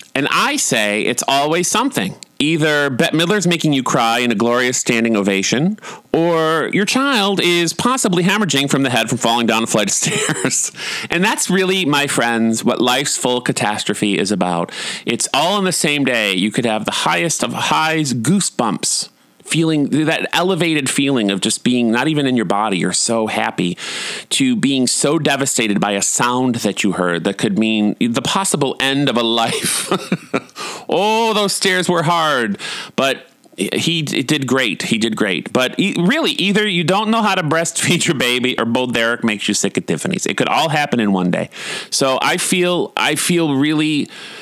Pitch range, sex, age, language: 115-180 Hz, male, 30-49, English